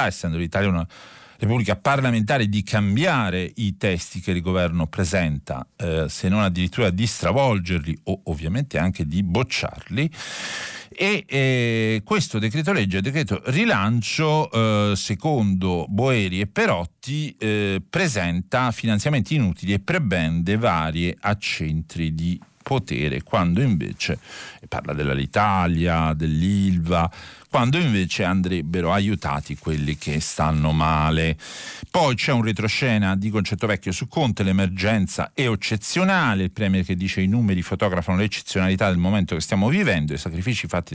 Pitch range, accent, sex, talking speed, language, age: 85-110 Hz, native, male, 125 wpm, Italian, 50-69